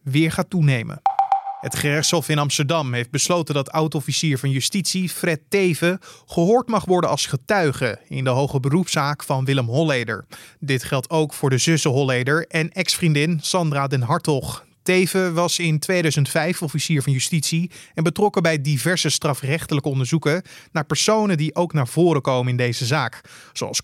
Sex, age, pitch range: male, 20-39, 140-175 Hz